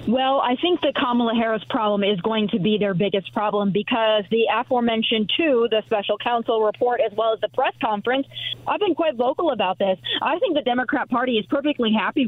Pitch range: 215-280 Hz